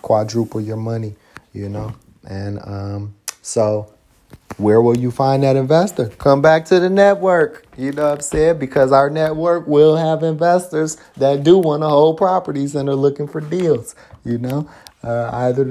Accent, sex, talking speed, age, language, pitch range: American, male, 170 wpm, 30-49, English, 115-135 Hz